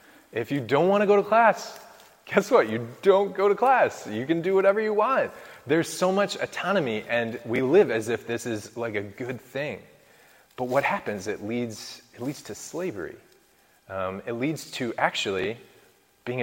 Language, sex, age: English, male, 20-39